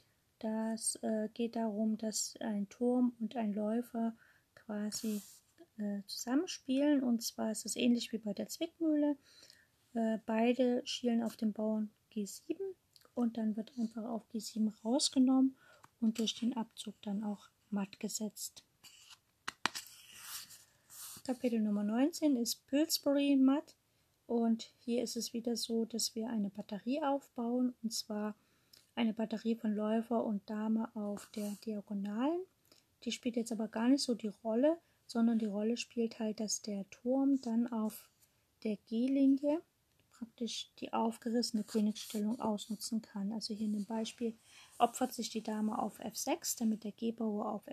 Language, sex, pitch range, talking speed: German, female, 215-245 Hz, 140 wpm